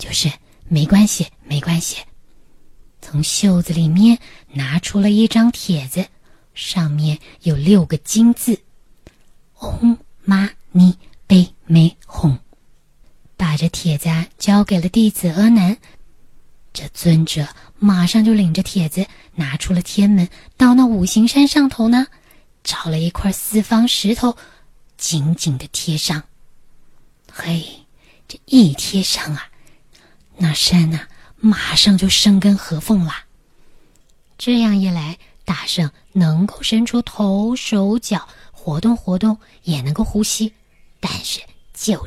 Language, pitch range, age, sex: Chinese, 160-210 Hz, 20-39, female